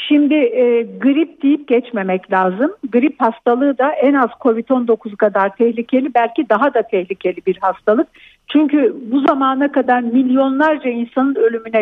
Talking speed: 135 wpm